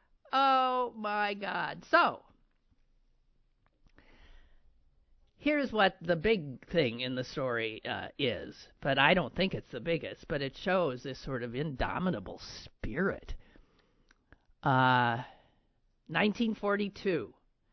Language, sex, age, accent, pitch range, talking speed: English, male, 50-69, American, 130-190 Hz, 105 wpm